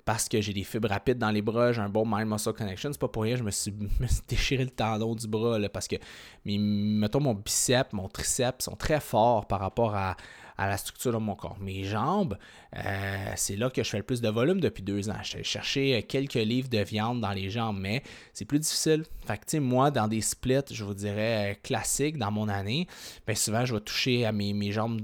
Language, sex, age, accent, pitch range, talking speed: French, male, 20-39, Canadian, 105-130 Hz, 230 wpm